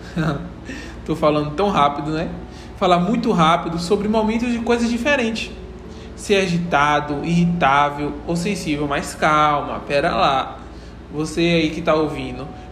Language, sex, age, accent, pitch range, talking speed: Portuguese, male, 20-39, Brazilian, 155-210 Hz, 125 wpm